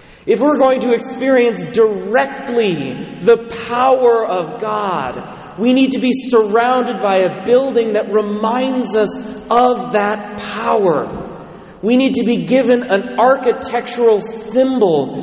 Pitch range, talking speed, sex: 150-225 Hz, 125 wpm, male